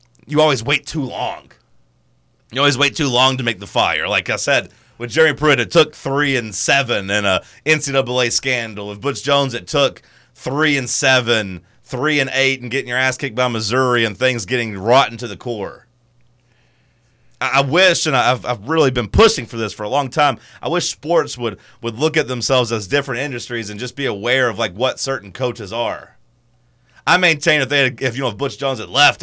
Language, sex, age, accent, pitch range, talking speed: English, male, 30-49, American, 120-145 Hz, 210 wpm